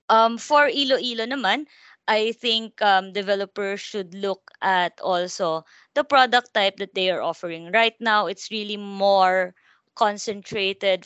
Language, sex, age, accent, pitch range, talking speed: English, female, 20-39, Filipino, 190-235 Hz, 130 wpm